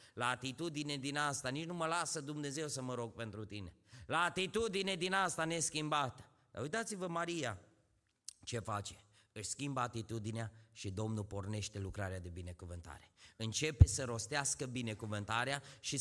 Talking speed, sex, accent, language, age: 140 wpm, male, native, Romanian, 30-49